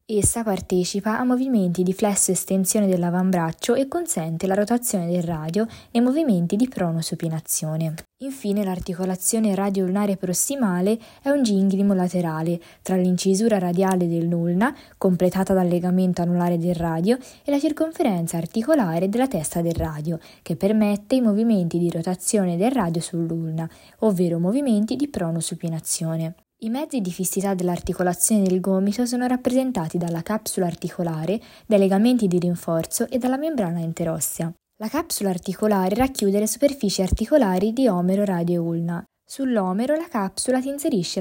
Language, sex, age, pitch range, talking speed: Italian, female, 20-39, 175-225 Hz, 140 wpm